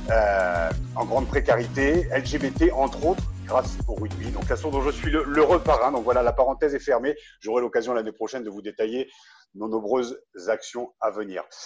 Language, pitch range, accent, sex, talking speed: French, 110-160 Hz, French, male, 190 wpm